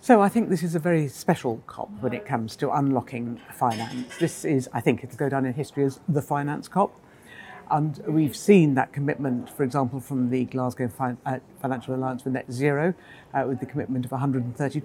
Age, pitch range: 60-79, 130-170 Hz